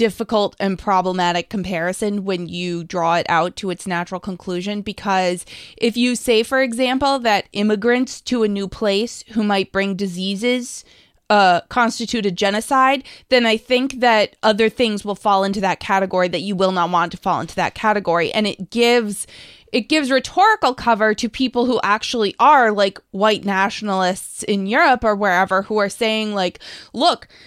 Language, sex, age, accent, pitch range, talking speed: English, female, 20-39, American, 195-245 Hz, 170 wpm